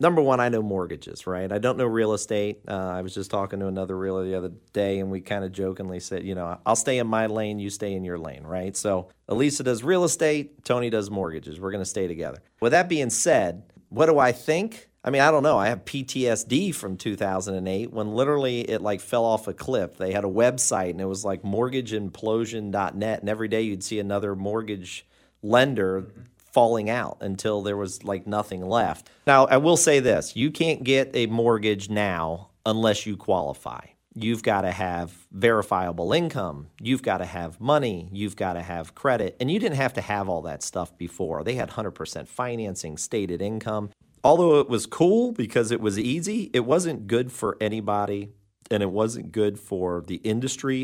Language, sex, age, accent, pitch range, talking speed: English, male, 40-59, American, 95-120 Hz, 200 wpm